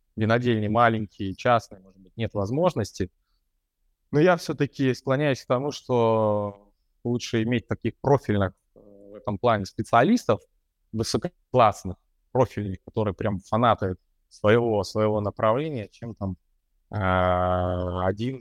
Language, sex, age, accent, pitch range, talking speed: Russian, male, 20-39, native, 100-125 Hz, 110 wpm